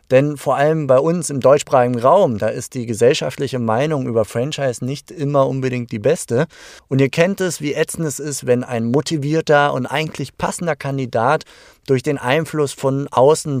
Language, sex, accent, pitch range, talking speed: German, male, German, 125-155 Hz, 175 wpm